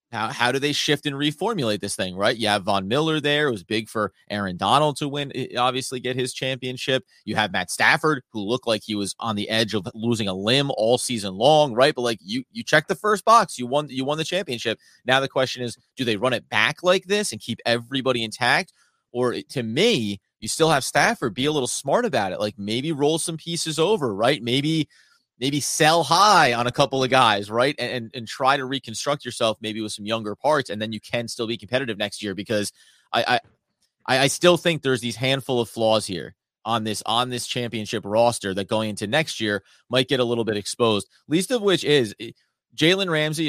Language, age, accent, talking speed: English, 30-49, American, 220 wpm